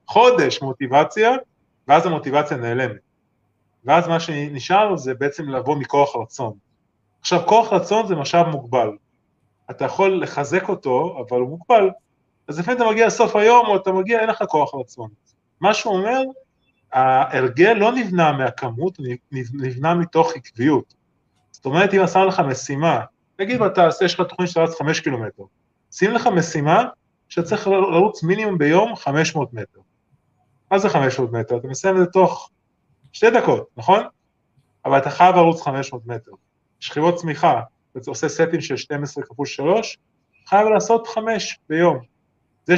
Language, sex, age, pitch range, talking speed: Hebrew, male, 20-39, 135-190 Hz, 145 wpm